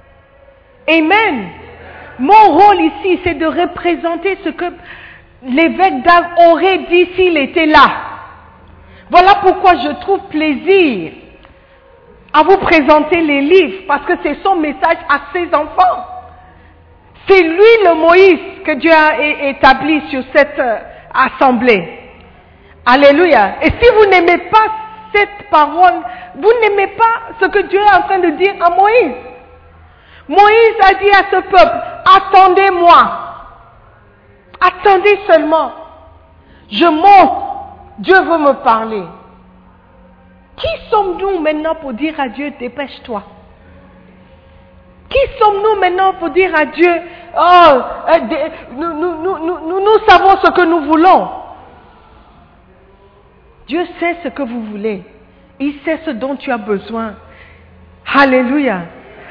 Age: 50-69